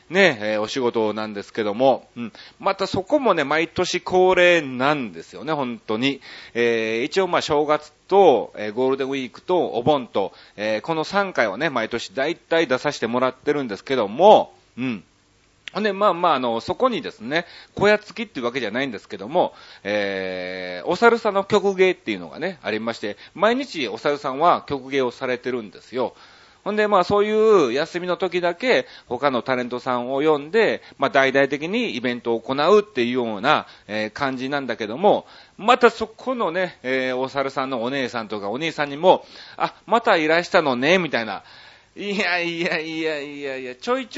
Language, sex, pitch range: Japanese, male, 115-180 Hz